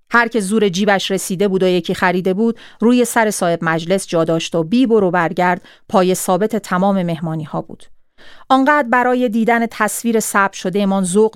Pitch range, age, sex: 170-215 Hz, 40-59, female